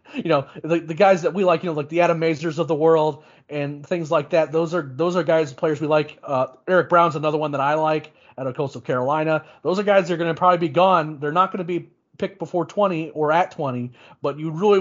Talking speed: 265 wpm